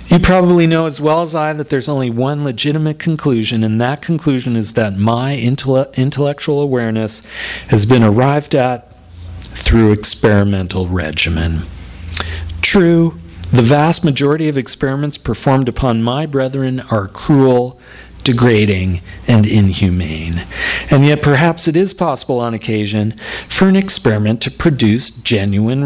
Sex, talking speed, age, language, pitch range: male, 130 wpm, 40-59, English, 105-145 Hz